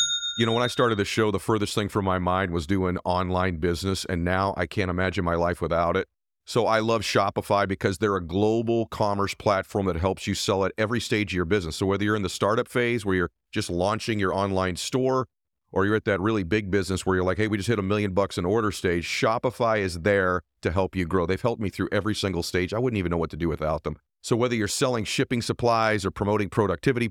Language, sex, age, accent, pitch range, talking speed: English, male, 40-59, American, 95-115 Hz, 250 wpm